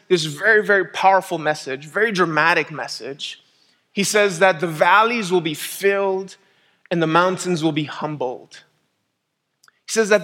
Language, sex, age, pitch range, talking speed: English, male, 30-49, 165-200 Hz, 145 wpm